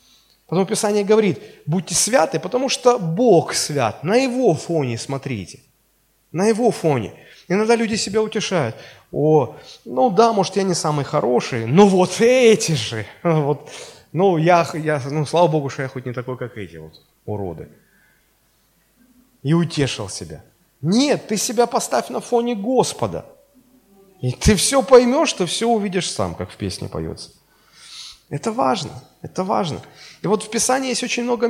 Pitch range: 150-220 Hz